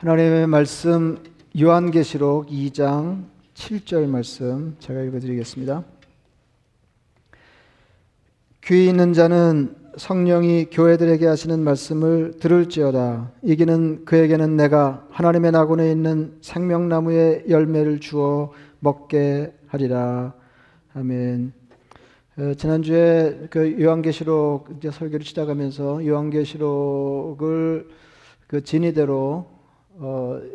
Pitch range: 140-160 Hz